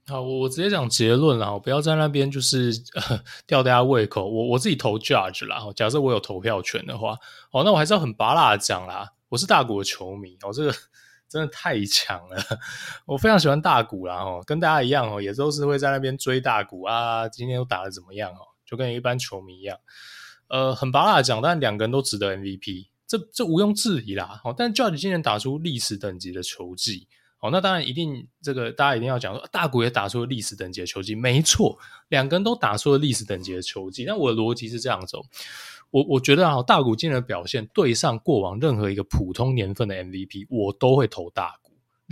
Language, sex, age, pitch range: Chinese, male, 20-39, 100-140 Hz